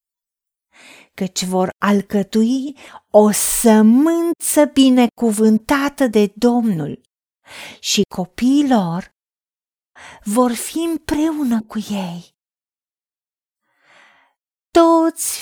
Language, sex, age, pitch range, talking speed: Romanian, female, 30-49, 210-280 Hz, 65 wpm